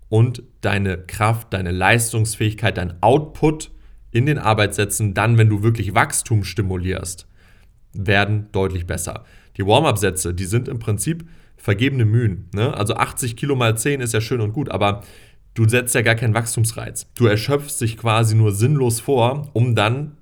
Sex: male